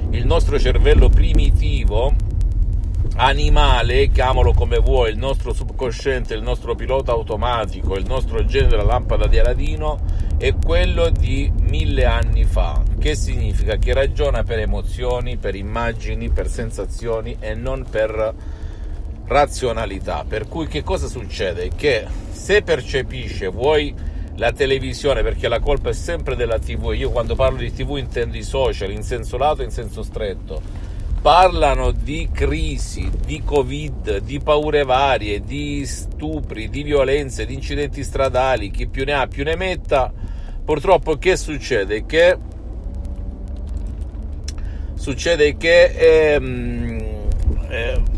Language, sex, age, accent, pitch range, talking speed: Italian, male, 50-69, native, 80-120 Hz, 130 wpm